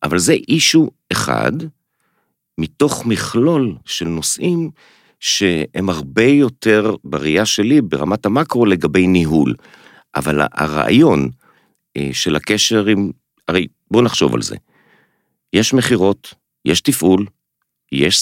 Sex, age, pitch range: male, 50-69, 80-130 Hz